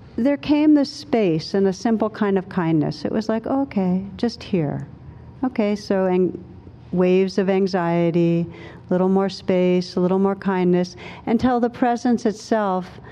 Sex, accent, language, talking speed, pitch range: female, American, English, 160 wpm, 170-225 Hz